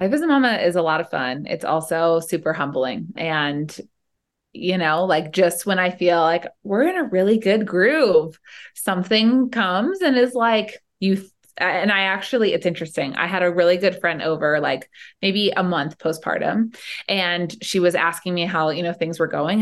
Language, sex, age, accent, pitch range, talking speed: English, female, 20-39, American, 170-220 Hz, 190 wpm